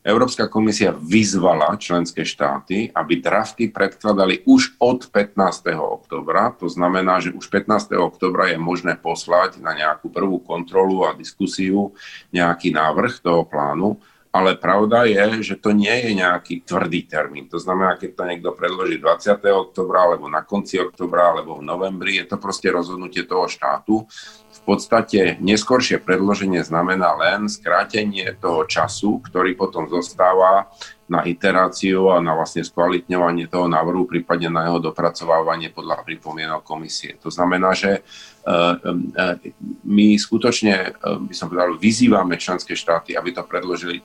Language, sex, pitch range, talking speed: Slovak, male, 85-100 Hz, 140 wpm